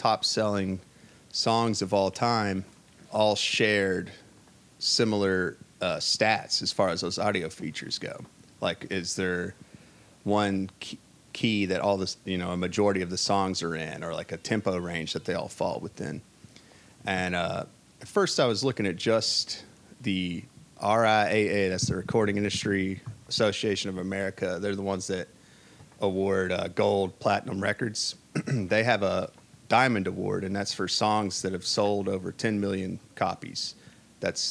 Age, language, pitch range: 30-49, English, 95-105 Hz